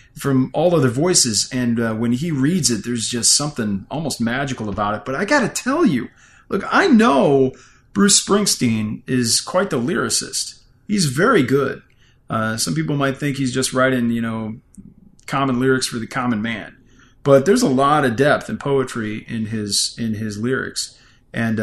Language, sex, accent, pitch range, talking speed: English, male, American, 120-185 Hz, 180 wpm